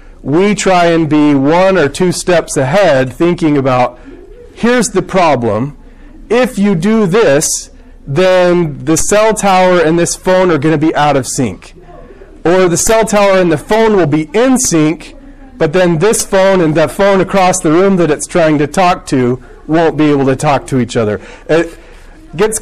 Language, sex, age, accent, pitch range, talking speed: English, male, 40-59, American, 150-195 Hz, 185 wpm